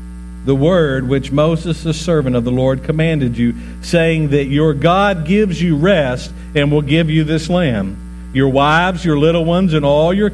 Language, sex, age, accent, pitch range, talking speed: English, male, 50-69, American, 120-155 Hz, 185 wpm